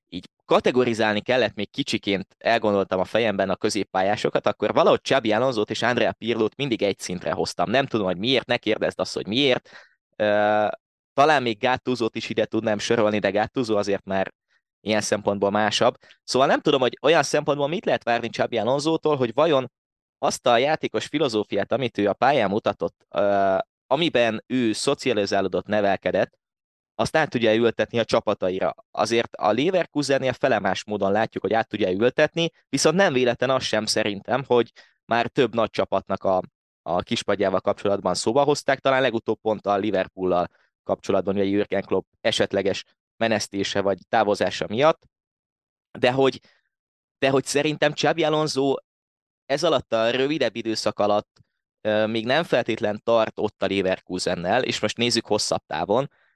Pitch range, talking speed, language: 100-130 Hz, 150 wpm, Hungarian